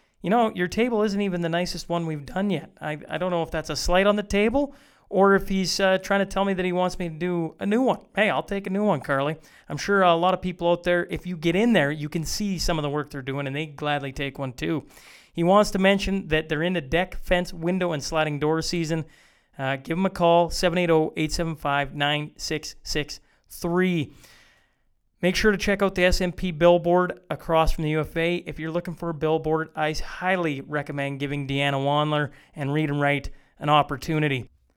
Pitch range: 150-180 Hz